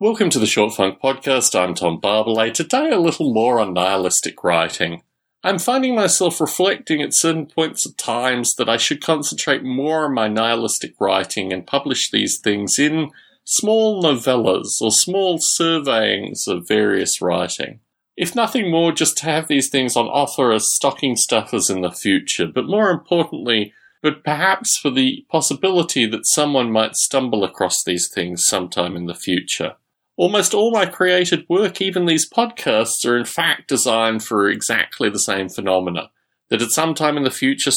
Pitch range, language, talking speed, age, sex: 115-170 Hz, English, 170 wpm, 30-49, male